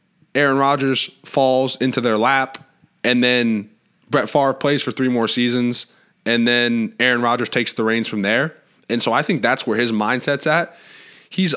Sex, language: male, English